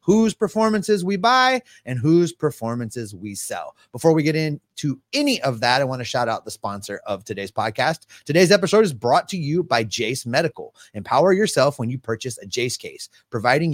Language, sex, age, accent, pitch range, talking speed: English, male, 30-49, American, 125-185 Hz, 190 wpm